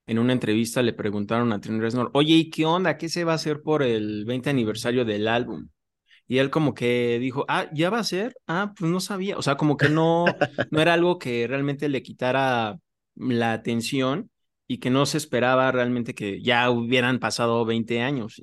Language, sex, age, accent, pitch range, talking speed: Spanish, male, 20-39, Mexican, 115-145 Hz, 205 wpm